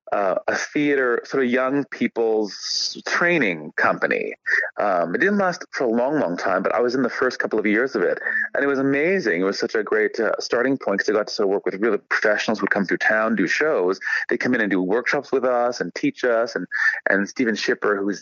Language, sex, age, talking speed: English, male, 30-49, 240 wpm